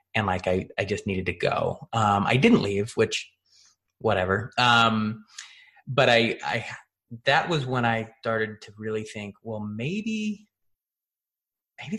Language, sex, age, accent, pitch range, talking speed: English, male, 30-49, American, 105-120 Hz, 145 wpm